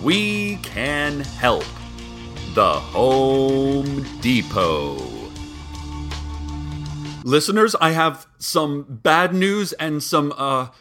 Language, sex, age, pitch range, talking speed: English, male, 30-49, 125-165 Hz, 85 wpm